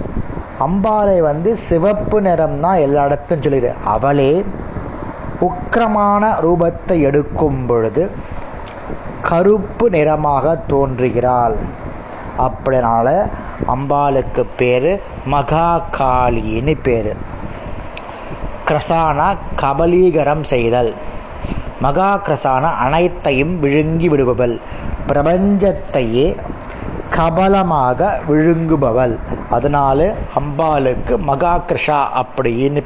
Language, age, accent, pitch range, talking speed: Tamil, 20-39, native, 130-165 Hz, 70 wpm